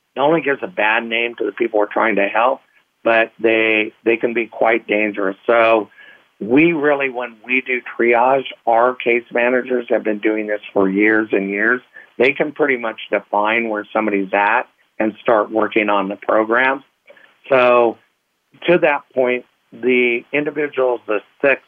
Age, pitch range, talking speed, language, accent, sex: 60-79, 105-125 Hz, 165 wpm, English, American, male